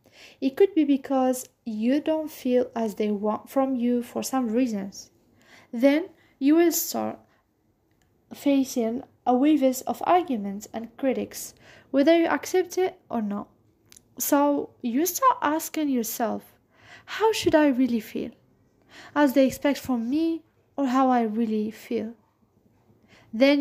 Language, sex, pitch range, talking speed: English, female, 210-290 Hz, 135 wpm